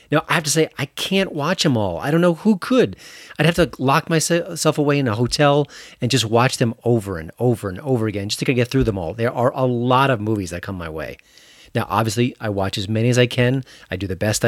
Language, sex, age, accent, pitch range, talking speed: English, male, 40-59, American, 110-160 Hz, 260 wpm